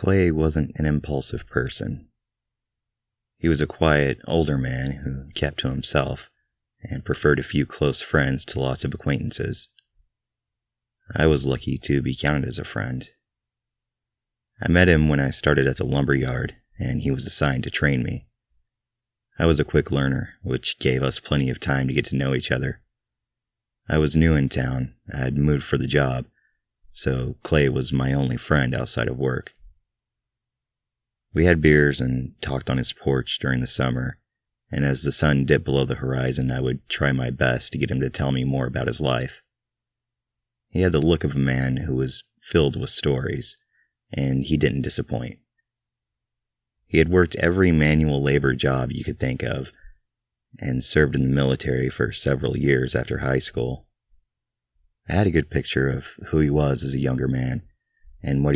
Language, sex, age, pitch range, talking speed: English, male, 30-49, 65-80 Hz, 180 wpm